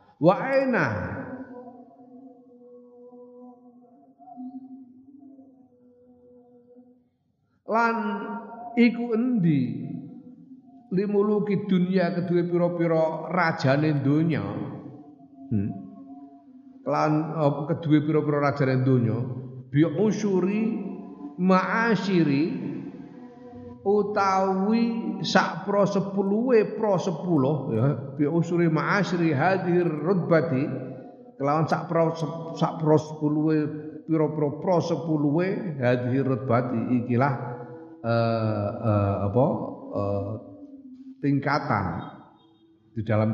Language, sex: Indonesian, male